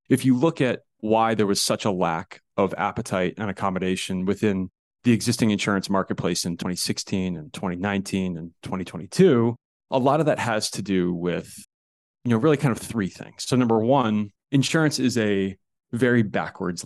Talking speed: 170 wpm